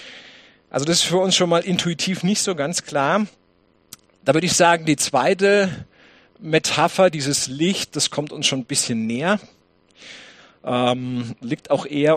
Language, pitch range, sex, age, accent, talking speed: English, 135-180 Hz, male, 50-69, German, 160 wpm